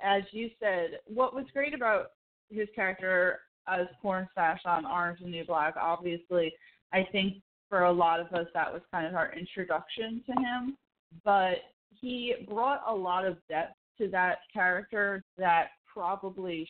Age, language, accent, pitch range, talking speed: 20-39, English, American, 175-210 Hz, 160 wpm